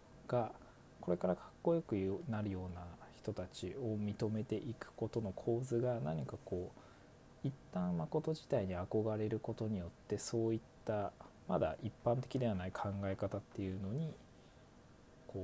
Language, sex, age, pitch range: Japanese, male, 20-39, 95-115 Hz